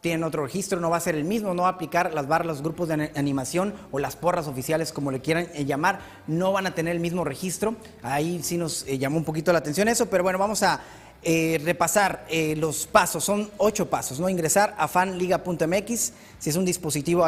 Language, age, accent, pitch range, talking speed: Spanish, 30-49, Mexican, 150-185 Hz, 220 wpm